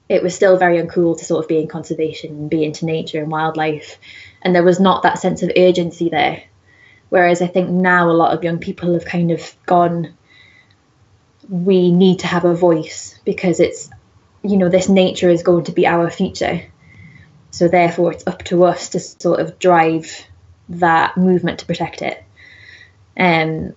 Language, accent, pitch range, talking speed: English, British, 165-180 Hz, 185 wpm